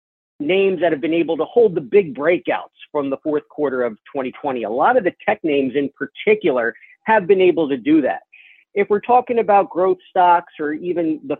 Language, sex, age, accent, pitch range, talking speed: English, male, 40-59, American, 140-190 Hz, 205 wpm